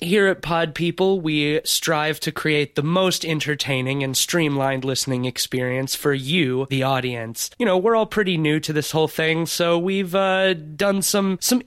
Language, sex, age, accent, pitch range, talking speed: English, male, 20-39, American, 135-180 Hz, 180 wpm